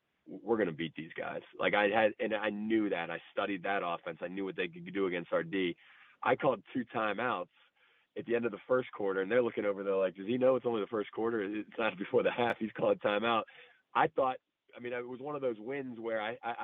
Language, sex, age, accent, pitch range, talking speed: English, male, 30-49, American, 105-125 Hz, 260 wpm